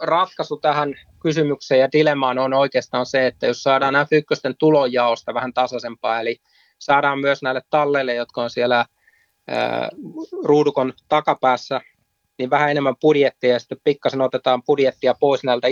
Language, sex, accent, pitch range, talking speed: Finnish, male, native, 120-135 Hz, 145 wpm